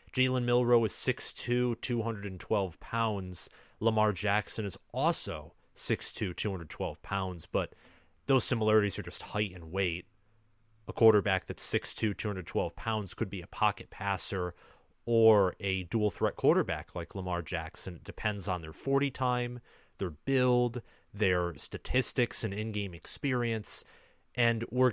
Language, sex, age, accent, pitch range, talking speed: English, male, 30-49, American, 95-115 Hz, 130 wpm